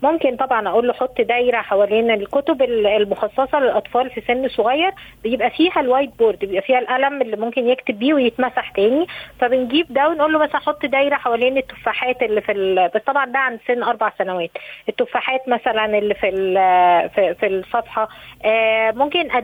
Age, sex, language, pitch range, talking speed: 20-39, female, Arabic, 225-270 Hz, 165 wpm